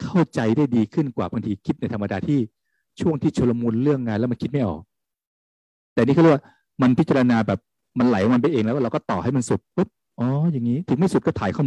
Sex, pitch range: male, 105-150 Hz